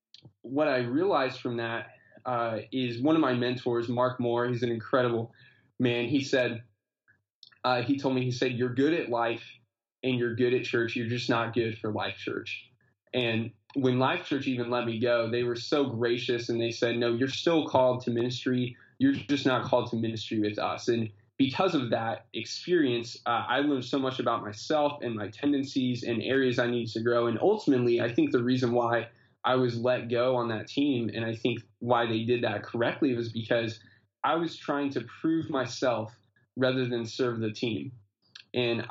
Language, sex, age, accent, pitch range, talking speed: English, male, 20-39, American, 115-130 Hz, 195 wpm